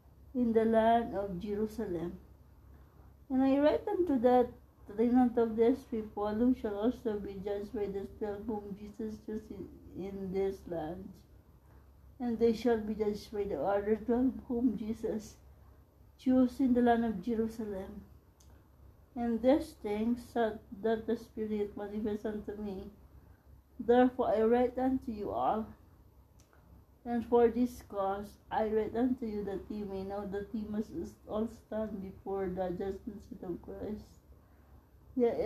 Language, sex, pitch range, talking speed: English, female, 200-235 Hz, 145 wpm